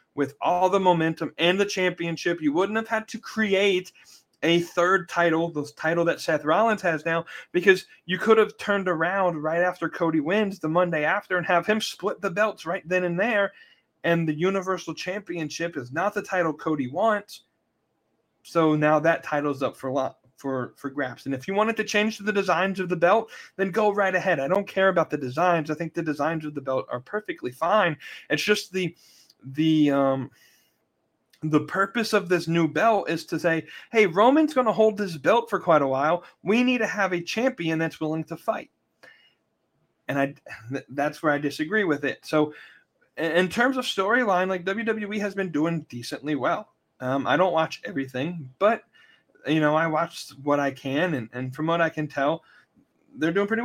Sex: male